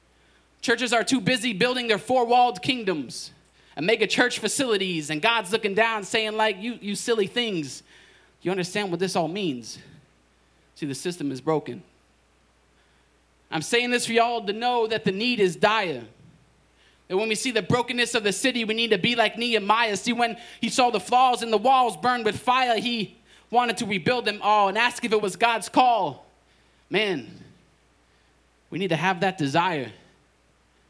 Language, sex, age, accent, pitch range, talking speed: English, male, 20-39, American, 155-240 Hz, 180 wpm